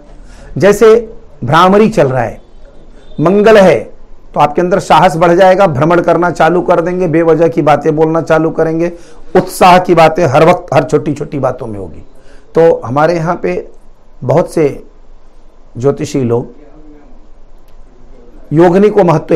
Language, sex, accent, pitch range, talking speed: Hindi, male, native, 140-175 Hz, 145 wpm